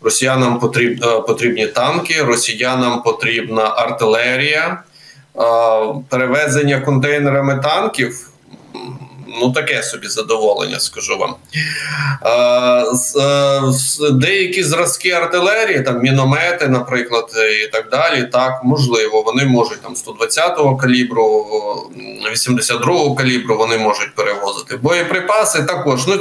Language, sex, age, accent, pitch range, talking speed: Ukrainian, male, 20-39, native, 125-165 Hz, 90 wpm